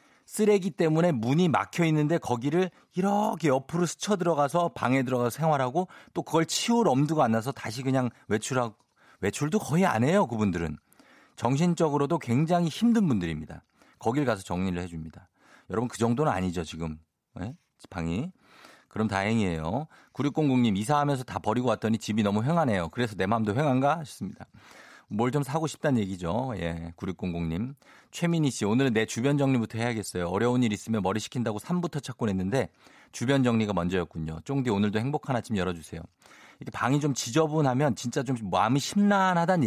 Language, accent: Korean, native